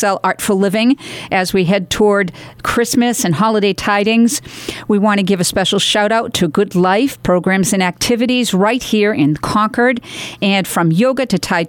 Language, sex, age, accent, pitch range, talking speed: English, female, 50-69, American, 180-225 Hz, 170 wpm